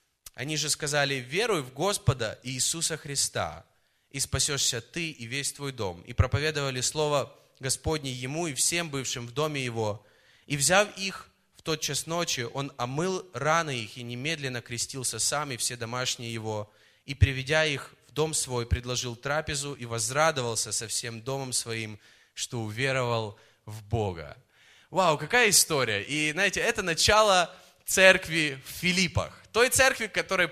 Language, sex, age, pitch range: Russian, male, 20-39, 130-185 Hz